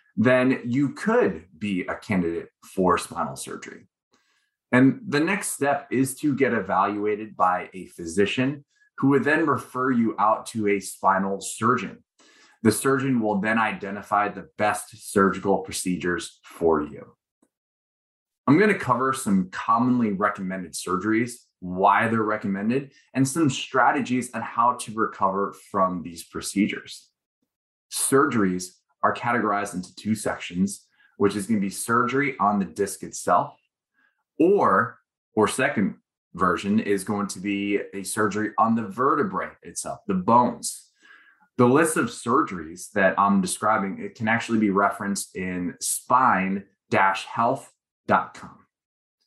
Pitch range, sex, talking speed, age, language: 95-120 Hz, male, 130 wpm, 20-39, English